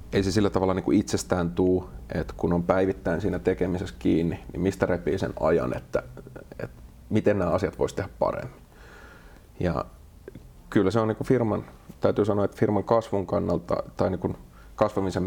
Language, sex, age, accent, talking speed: Finnish, male, 30-49, native, 175 wpm